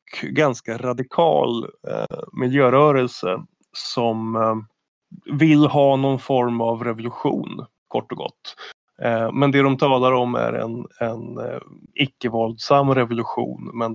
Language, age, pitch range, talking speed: Swedish, 20-39, 115-135 Hz, 120 wpm